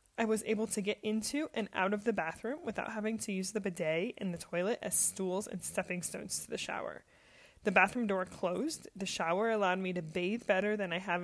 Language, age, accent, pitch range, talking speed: English, 20-39, American, 185-220 Hz, 225 wpm